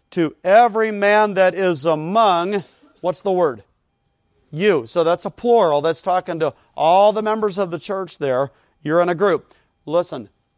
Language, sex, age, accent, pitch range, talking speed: English, male, 40-59, American, 140-185 Hz, 165 wpm